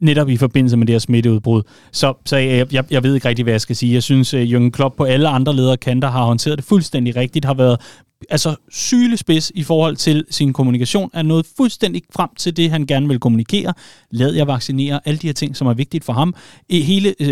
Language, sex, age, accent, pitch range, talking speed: Danish, male, 30-49, native, 130-170 Hz, 230 wpm